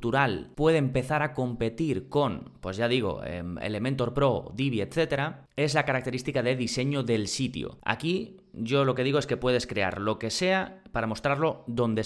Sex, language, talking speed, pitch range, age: male, Spanish, 170 wpm, 115-145 Hz, 20-39